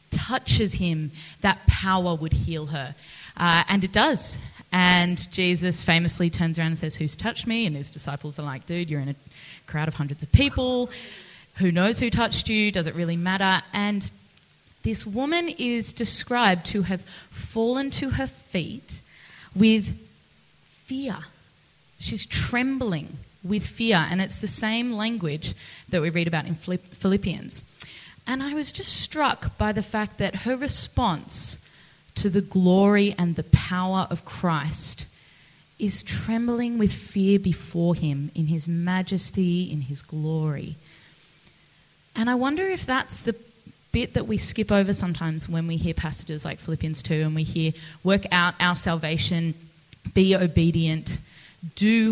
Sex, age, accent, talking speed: female, 10-29, Australian, 150 wpm